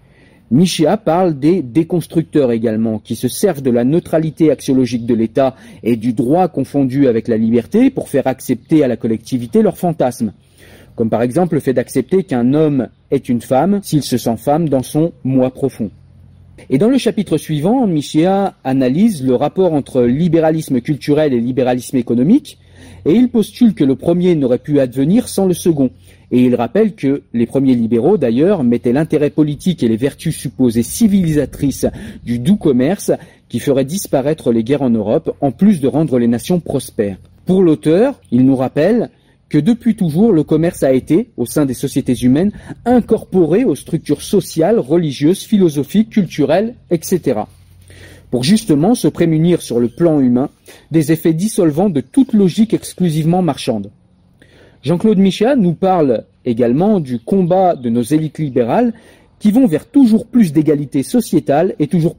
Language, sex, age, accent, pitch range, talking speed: French, male, 40-59, French, 125-180 Hz, 165 wpm